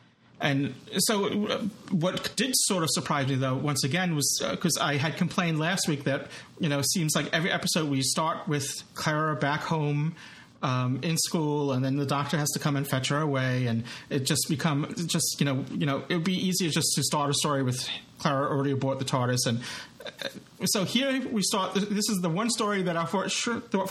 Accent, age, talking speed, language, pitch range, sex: American, 30-49, 215 wpm, English, 135-170 Hz, male